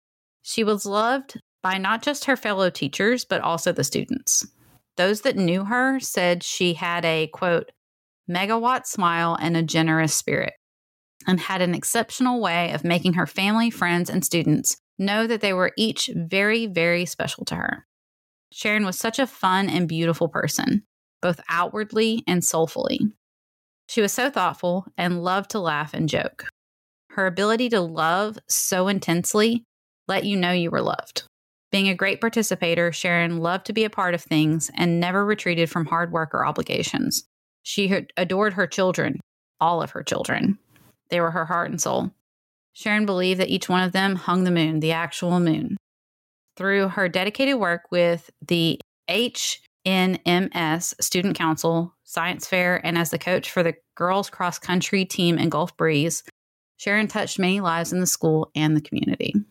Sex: female